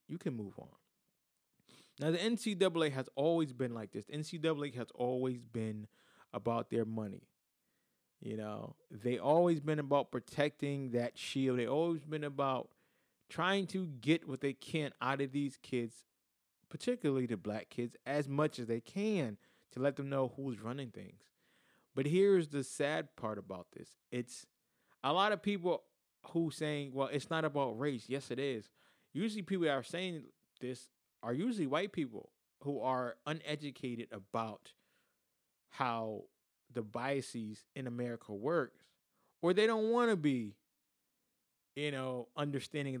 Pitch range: 120-160 Hz